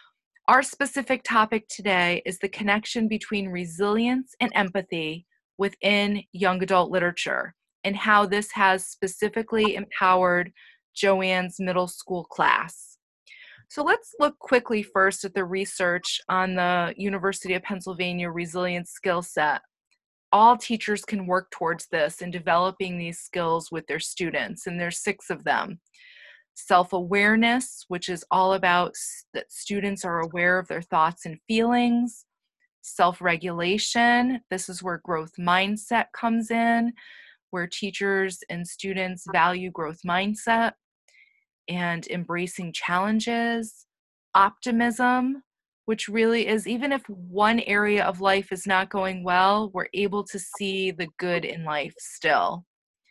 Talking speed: 130 wpm